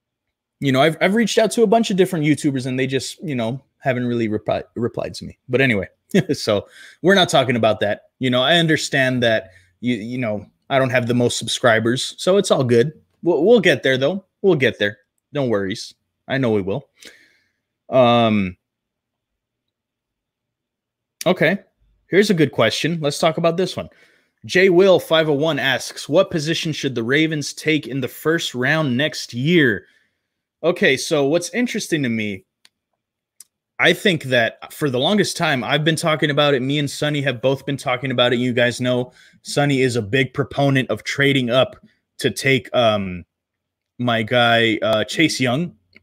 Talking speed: 175 wpm